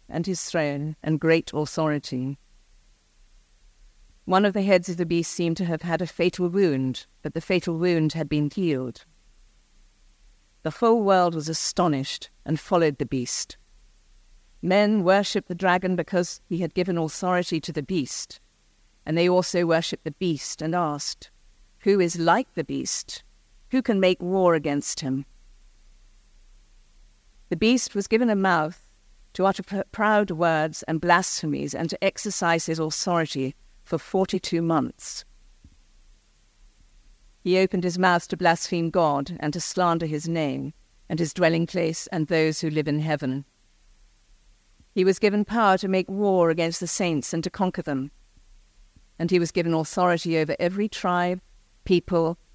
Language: English